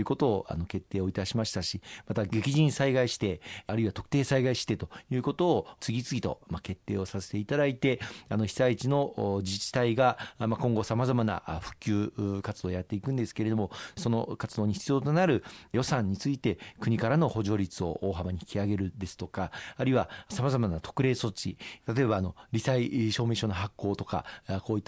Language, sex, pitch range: Japanese, male, 100-130 Hz